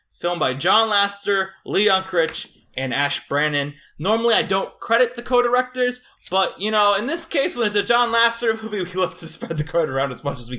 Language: English